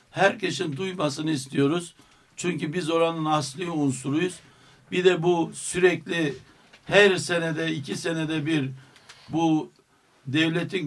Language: Turkish